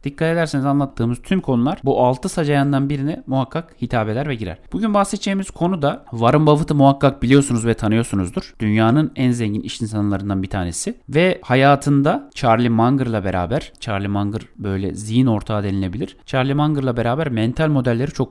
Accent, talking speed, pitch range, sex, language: native, 160 wpm, 110-155 Hz, male, Turkish